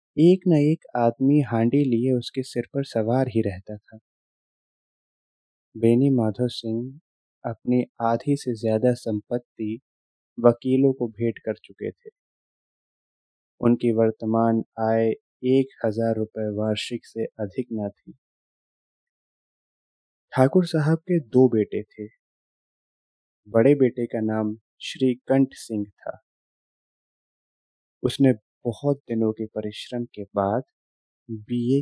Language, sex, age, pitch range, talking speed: Hindi, male, 20-39, 110-130 Hz, 115 wpm